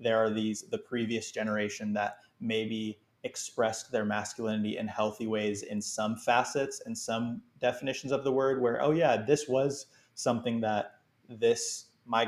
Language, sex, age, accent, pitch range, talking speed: English, male, 20-39, American, 105-120 Hz, 155 wpm